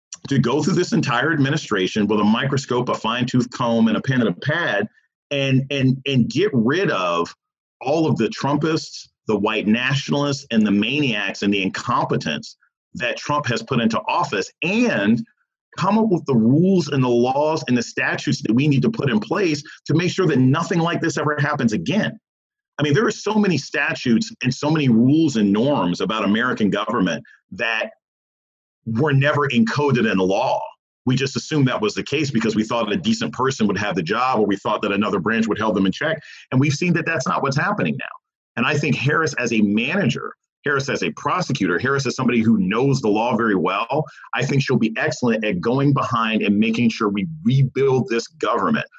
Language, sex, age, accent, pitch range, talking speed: English, male, 40-59, American, 115-150 Hz, 205 wpm